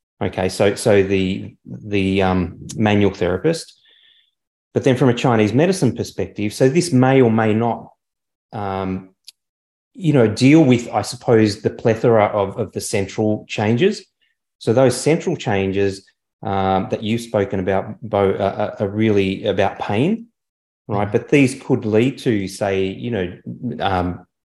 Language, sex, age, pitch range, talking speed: English, male, 30-49, 95-125 Hz, 145 wpm